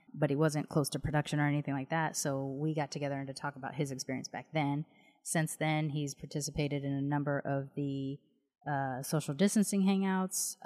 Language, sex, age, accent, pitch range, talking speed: English, female, 30-49, American, 140-165 Hz, 195 wpm